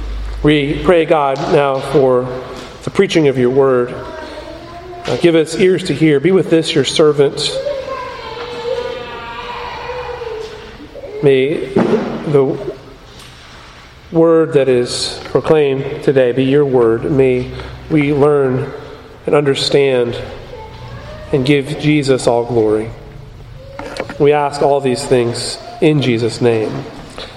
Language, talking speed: English, 105 wpm